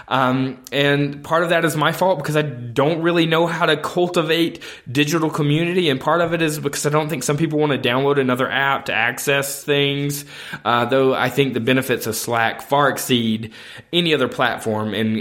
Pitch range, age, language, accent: 120-155 Hz, 20-39, English, American